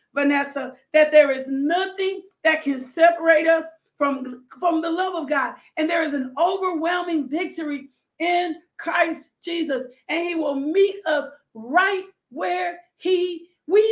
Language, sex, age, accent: English, female, 40-59, American